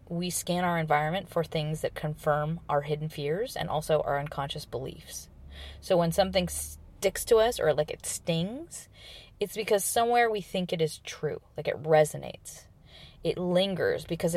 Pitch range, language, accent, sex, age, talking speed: 150-190 Hz, English, American, female, 20-39, 165 wpm